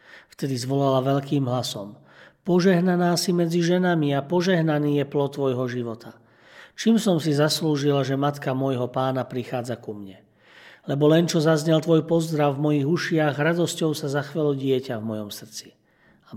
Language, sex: Slovak, male